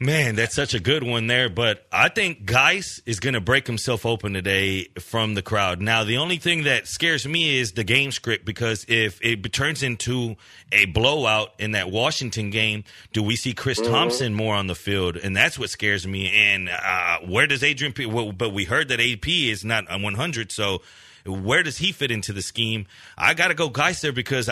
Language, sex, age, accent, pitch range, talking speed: English, male, 30-49, American, 110-145 Hz, 210 wpm